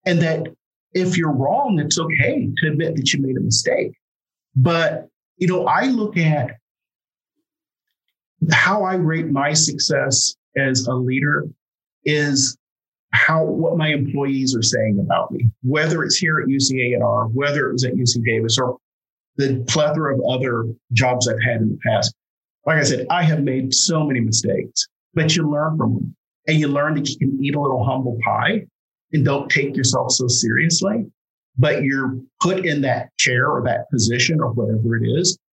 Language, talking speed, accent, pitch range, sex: English, 175 wpm, American, 125-155 Hz, male